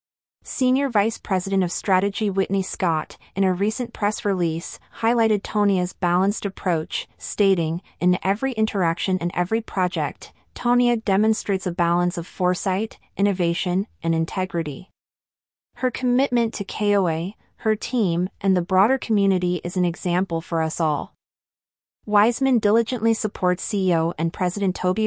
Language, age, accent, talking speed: English, 30-49, American, 130 wpm